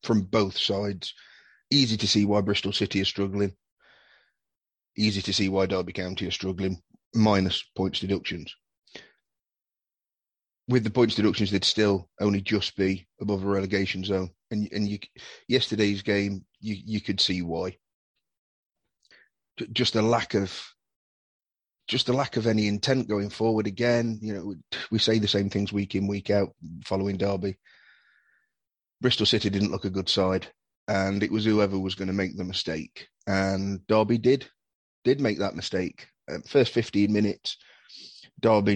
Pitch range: 95-110 Hz